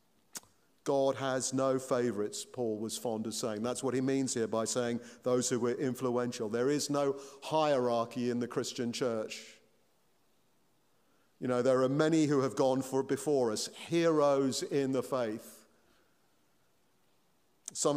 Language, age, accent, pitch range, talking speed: English, 50-69, British, 120-145 Hz, 145 wpm